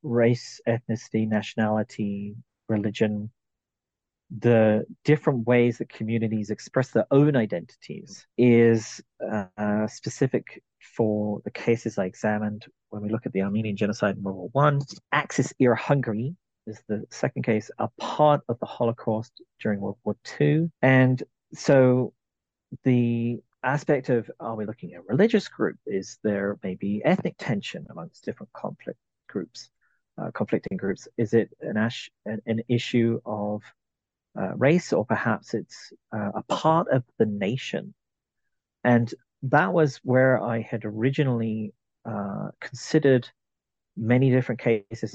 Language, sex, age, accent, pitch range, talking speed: English, male, 40-59, British, 110-135 Hz, 135 wpm